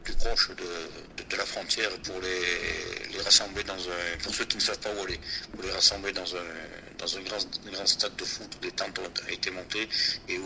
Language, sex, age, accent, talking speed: French, male, 50-69, French, 225 wpm